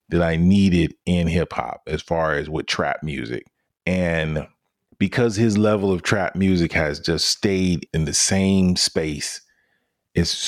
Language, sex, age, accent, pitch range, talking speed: English, male, 30-49, American, 85-110 Hz, 155 wpm